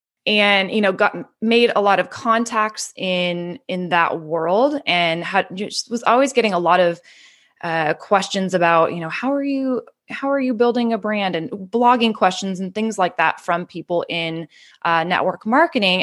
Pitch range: 180-235 Hz